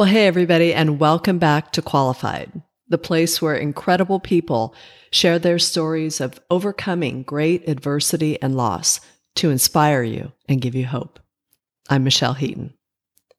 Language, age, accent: English, 50-69, American